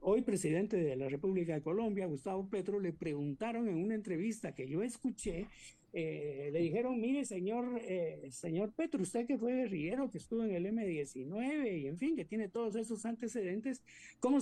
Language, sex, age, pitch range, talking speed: Spanish, male, 50-69, 180-265 Hz, 180 wpm